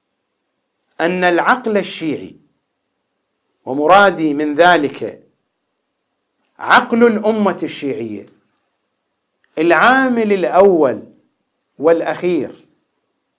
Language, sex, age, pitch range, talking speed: English, male, 50-69, 130-190 Hz, 55 wpm